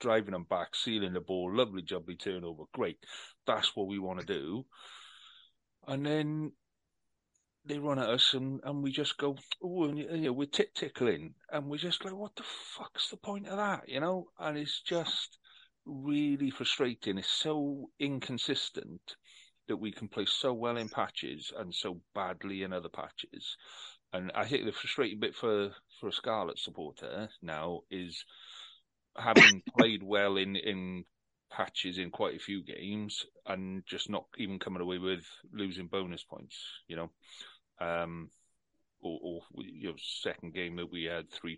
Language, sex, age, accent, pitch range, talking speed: English, male, 40-59, British, 95-140 Hz, 165 wpm